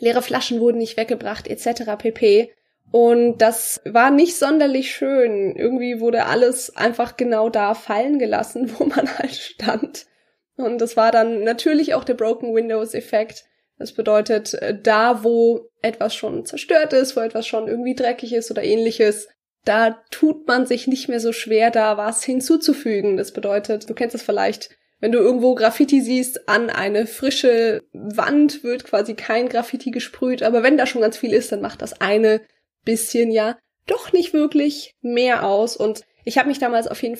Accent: German